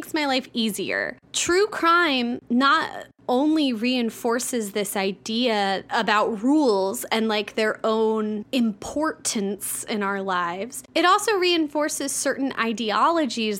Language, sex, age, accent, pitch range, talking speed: English, female, 20-39, American, 205-280 Hz, 110 wpm